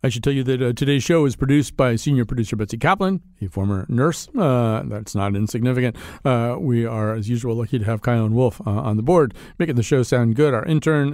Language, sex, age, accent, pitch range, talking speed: English, male, 50-69, American, 115-145 Hz, 235 wpm